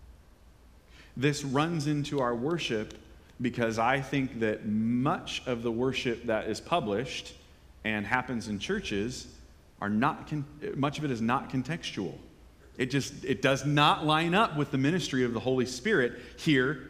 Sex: male